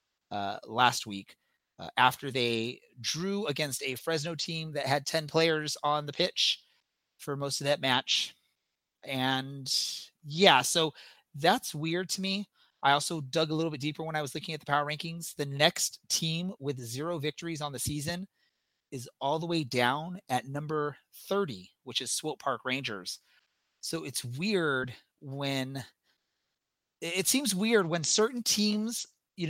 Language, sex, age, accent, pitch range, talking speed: English, male, 30-49, American, 130-170 Hz, 160 wpm